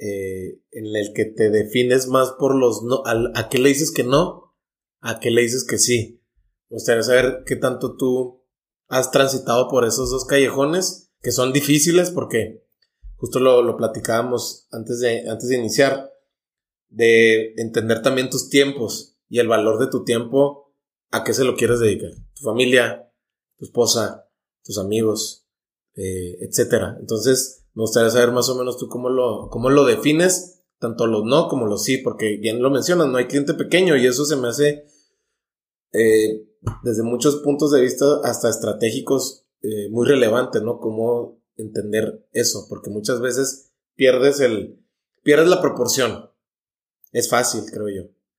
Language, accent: Spanish, Mexican